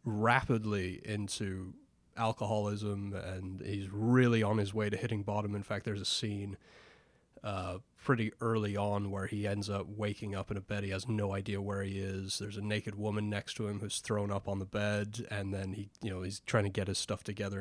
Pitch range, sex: 100-115 Hz, male